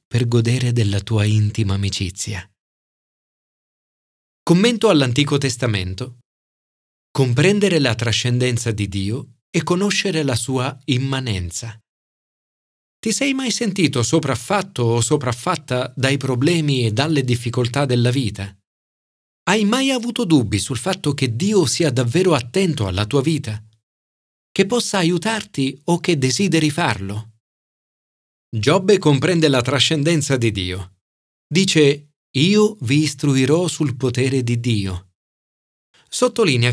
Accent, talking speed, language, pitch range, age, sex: native, 115 wpm, Italian, 110-165 Hz, 40-59, male